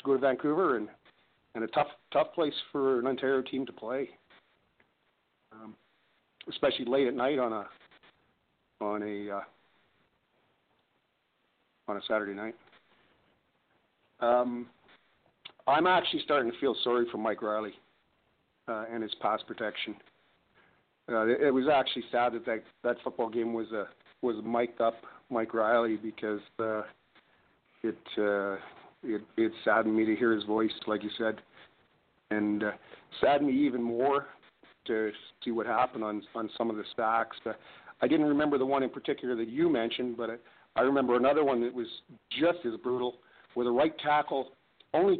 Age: 50-69